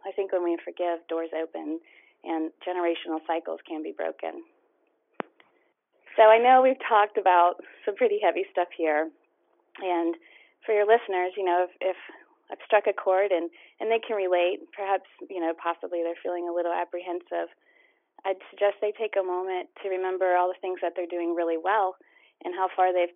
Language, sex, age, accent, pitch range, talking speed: English, female, 30-49, American, 170-205 Hz, 180 wpm